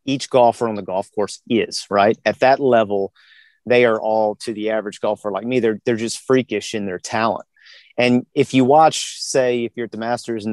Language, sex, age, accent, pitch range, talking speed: English, male, 30-49, American, 110-130 Hz, 215 wpm